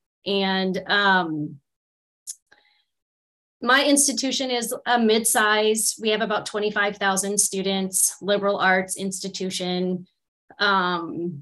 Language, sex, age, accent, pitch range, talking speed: English, female, 30-49, American, 180-210 Hz, 85 wpm